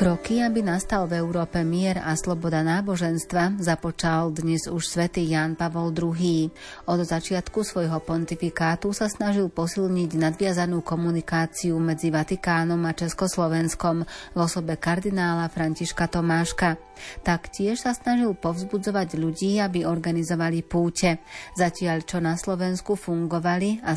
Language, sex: Slovak, female